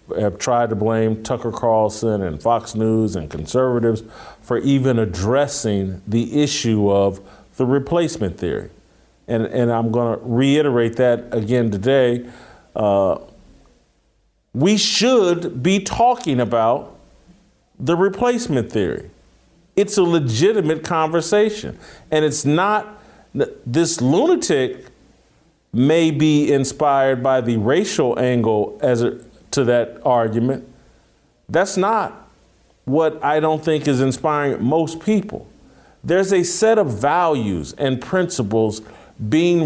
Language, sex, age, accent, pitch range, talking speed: English, male, 40-59, American, 120-170 Hz, 115 wpm